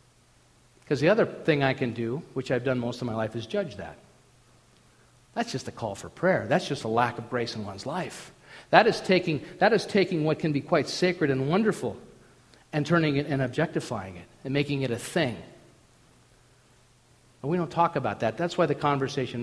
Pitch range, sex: 125-190 Hz, male